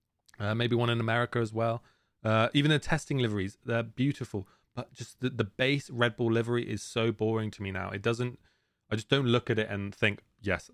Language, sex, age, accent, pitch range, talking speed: English, male, 20-39, British, 105-125 Hz, 220 wpm